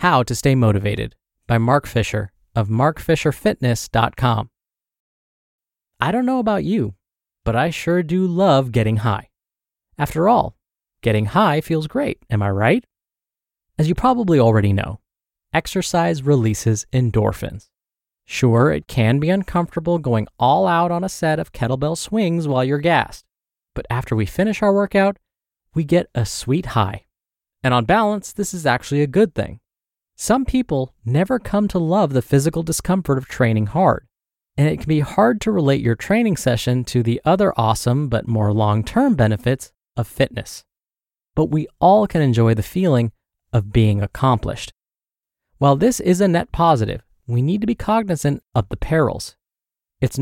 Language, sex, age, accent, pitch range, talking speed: English, male, 20-39, American, 115-175 Hz, 160 wpm